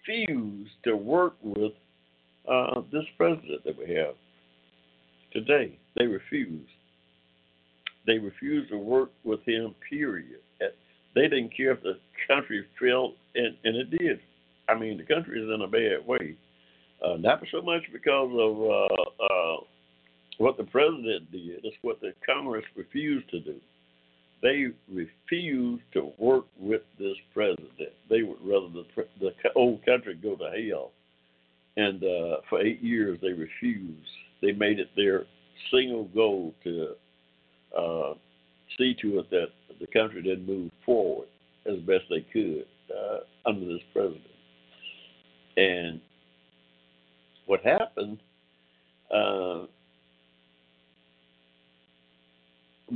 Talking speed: 125 wpm